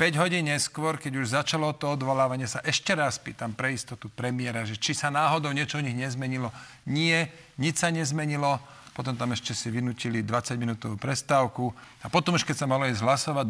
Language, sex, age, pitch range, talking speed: Slovak, male, 40-59, 120-150 Hz, 190 wpm